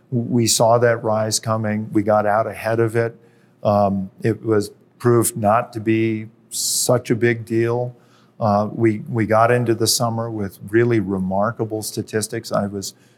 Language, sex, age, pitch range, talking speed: English, male, 50-69, 105-120 Hz, 160 wpm